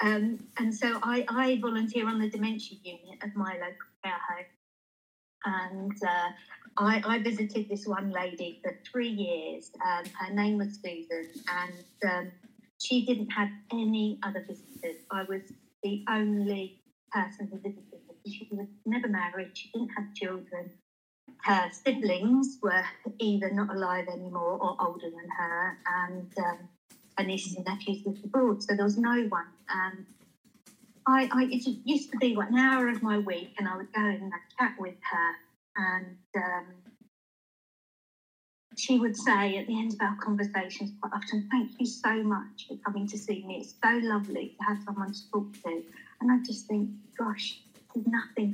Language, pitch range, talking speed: English, 190-230 Hz, 165 wpm